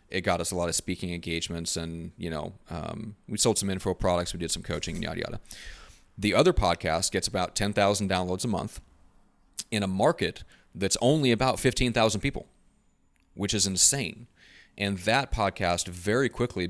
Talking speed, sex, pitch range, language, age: 175 wpm, male, 90-105 Hz, English, 30-49